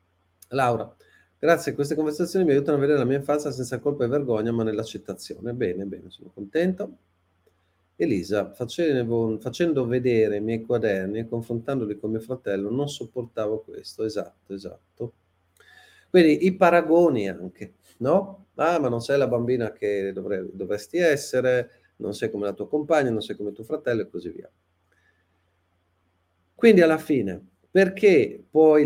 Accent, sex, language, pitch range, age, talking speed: native, male, Italian, 95-150 Hz, 40-59, 145 wpm